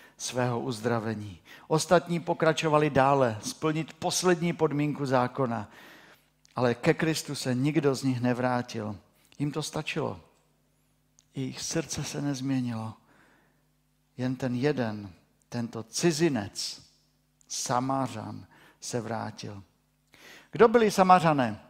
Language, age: Czech, 50-69